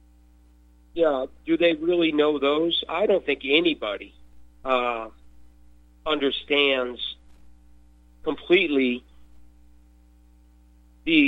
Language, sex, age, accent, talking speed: English, male, 50-69, American, 75 wpm